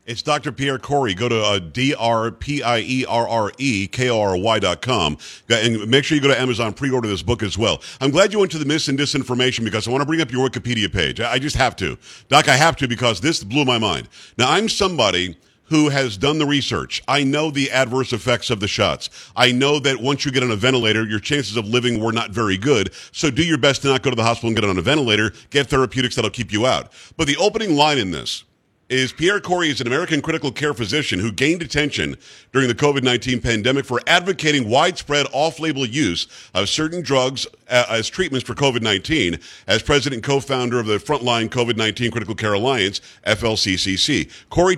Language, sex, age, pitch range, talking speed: English, male, 50-69, 115-150 Hz, 205 wpm